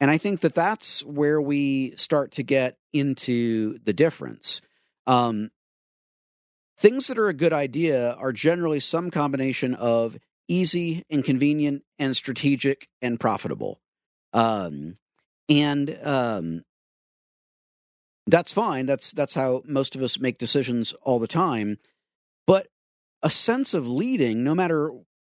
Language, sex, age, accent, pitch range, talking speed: English, male, 50-69, American, 120-165 Hz, 130 wpm